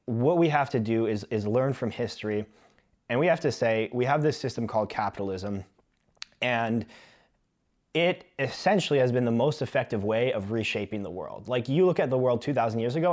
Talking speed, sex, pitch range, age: 195 wpm, male, 110-135 Hz, 20-39